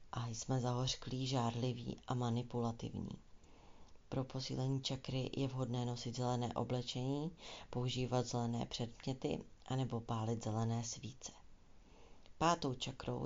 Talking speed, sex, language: 105 wpm, female, Czech